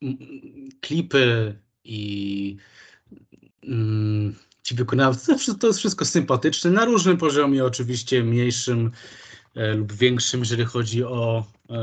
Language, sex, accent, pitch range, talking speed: Polish, male, native, 110-130 Hz, 105 wpm